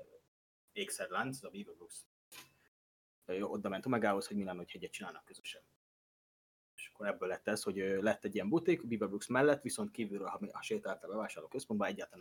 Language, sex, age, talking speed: Hungarian, male, 20-39, 165 wpm